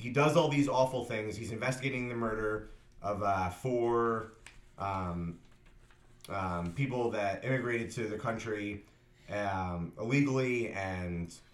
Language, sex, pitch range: English, male, 95-120 Hz